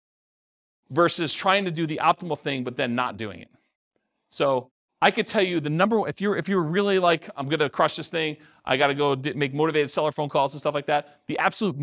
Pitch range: 130-165 Hz